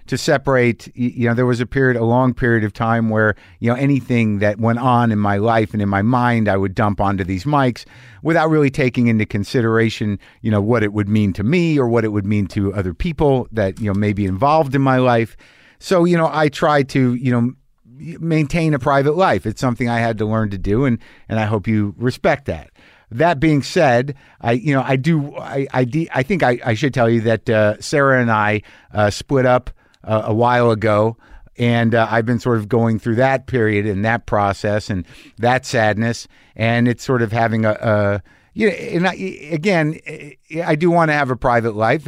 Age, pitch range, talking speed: 50-69, 105-130 Hz, 220 wpm